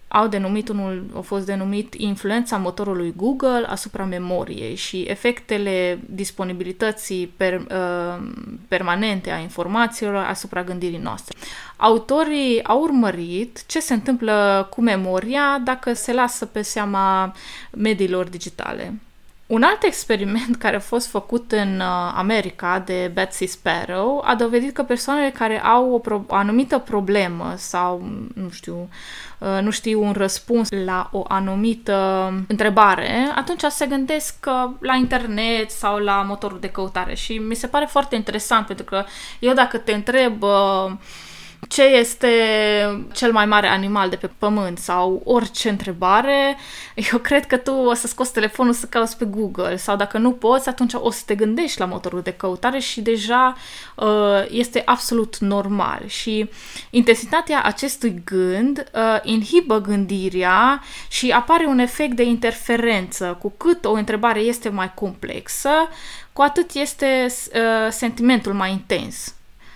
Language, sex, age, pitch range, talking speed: Romanian, female, 20-39, 195-245 Hz, 140 wpm